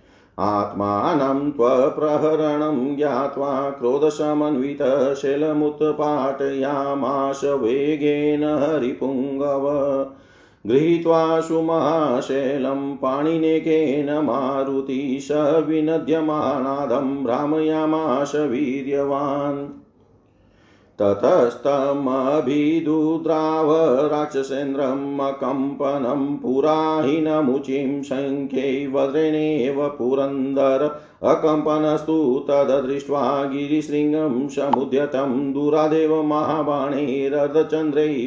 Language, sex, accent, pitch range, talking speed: Hindi, male, native, 135-150 Hz, 40 wpm